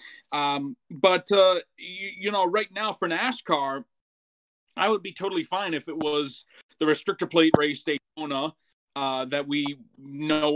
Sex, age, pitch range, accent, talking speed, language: male, 30-49, 135-185 Hz, American, 155 wpm, English